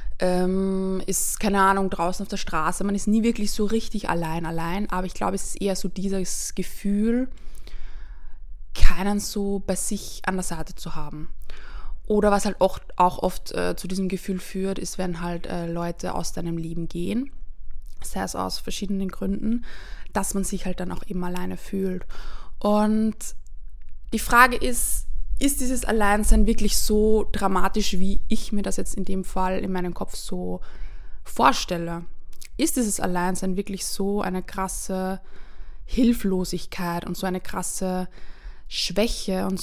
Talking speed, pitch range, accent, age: 155 wpm, 180-210 Hz, German, 20-39